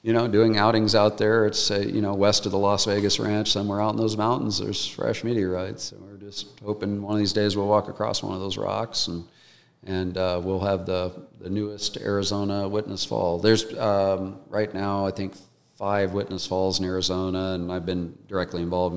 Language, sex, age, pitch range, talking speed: English, male, 40-59, 90-100 Hz, 210 wpm